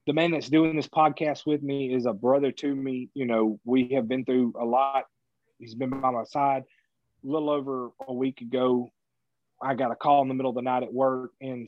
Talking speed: 230 wpm